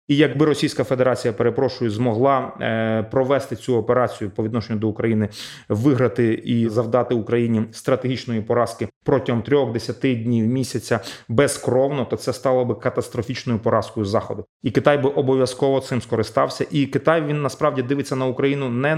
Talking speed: 140 wpm